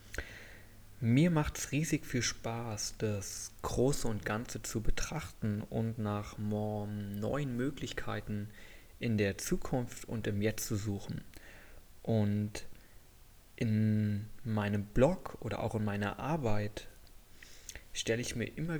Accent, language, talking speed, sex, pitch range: German, German, 120 wpm, male, 105-120 Hz